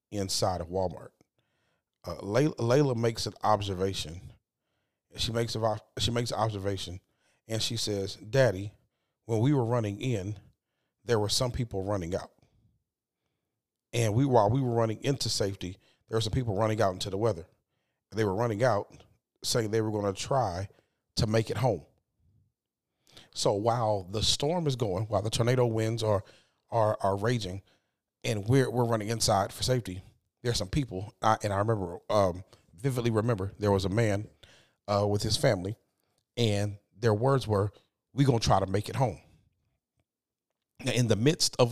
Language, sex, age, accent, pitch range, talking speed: English, male, 40-59, American, 100-120 Hz, 165 wpm